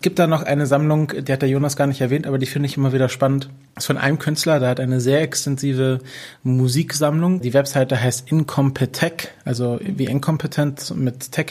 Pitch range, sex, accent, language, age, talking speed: 130-145 Hz, male, German, German, 20-39, 210 wpm